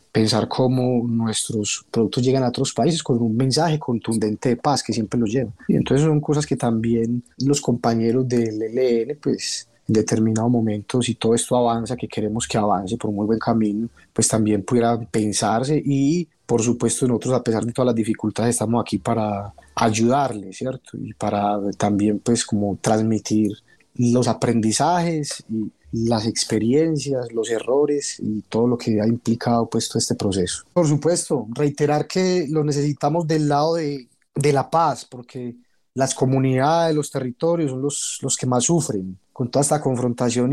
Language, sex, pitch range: Spanish, male, 115-140 Hz